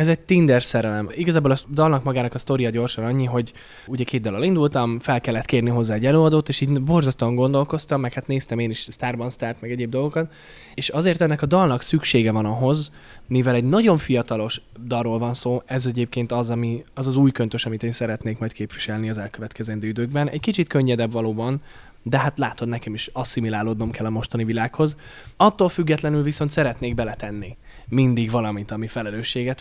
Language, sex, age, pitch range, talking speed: Hungarian, male, 10-29, 115-145 Hz, 185 wpm